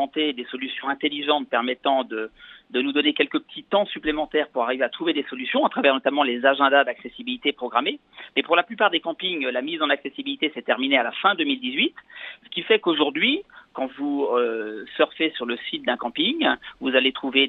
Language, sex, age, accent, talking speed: French, male, 40-59, French, 195 wpm